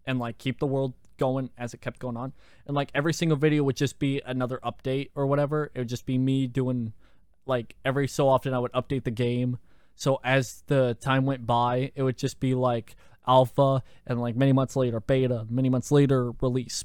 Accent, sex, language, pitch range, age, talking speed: American, male, English, 120-165 Hz, 20-39, 215 wpm